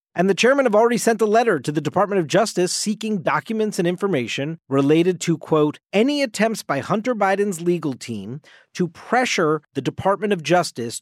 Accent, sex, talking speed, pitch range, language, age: American, male, 180 wpm, 150-205 Hz, English, 40-59